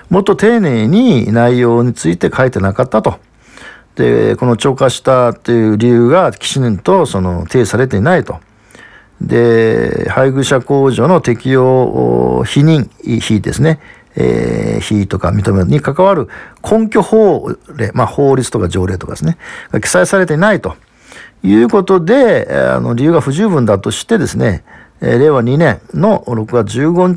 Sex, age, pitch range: male, 50-69, 105-170 Hz